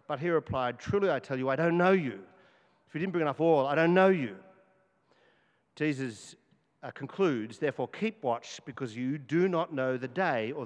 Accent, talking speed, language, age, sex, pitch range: Australian, 195 wpm, English, 50-69, male, 130-175 Hz